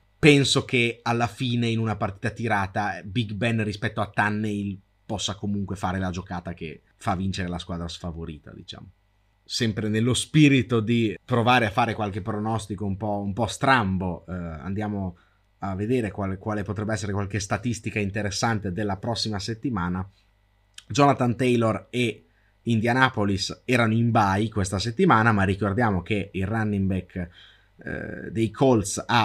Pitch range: 100-115 Hz